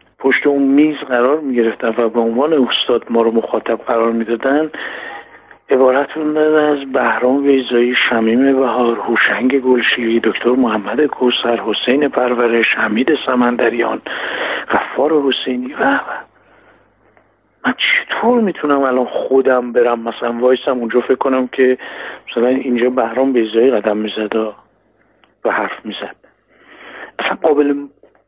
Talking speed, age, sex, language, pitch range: 115 wpm, 50-69, male, Persian, 115-145 Hz